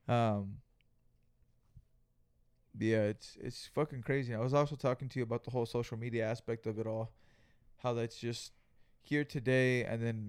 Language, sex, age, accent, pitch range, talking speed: English, male, 20-39, American, 110-120 Hz, 165 wpm